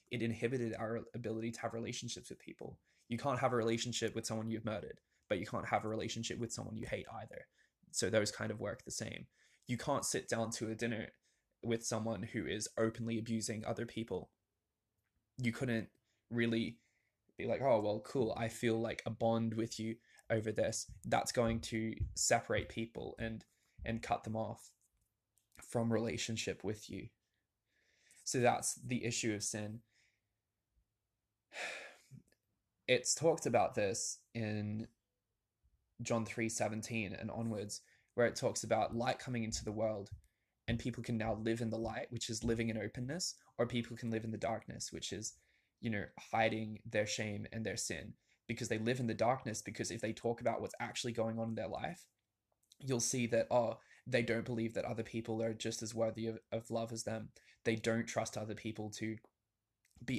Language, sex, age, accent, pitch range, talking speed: English, male, 20-39, Australian, 110-115 Hz, 180 wpm